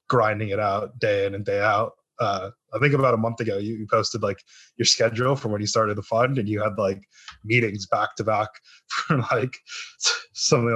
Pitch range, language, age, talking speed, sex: 105-125 Hz, English, 20-39, 210 wpm, male